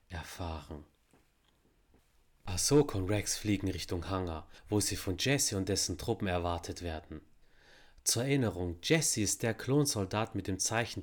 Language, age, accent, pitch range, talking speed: German, 30-49, German, 90-110 Hz, 135 wpm